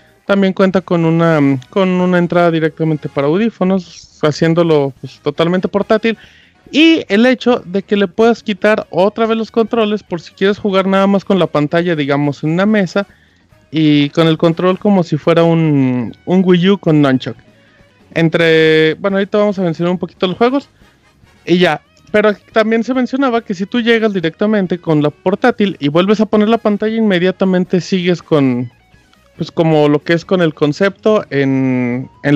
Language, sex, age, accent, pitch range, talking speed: Spanish, male, 30-49, Mexican, 155-210 Hz, 175 wpm